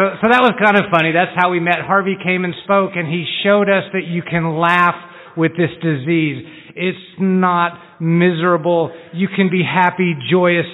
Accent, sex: American, male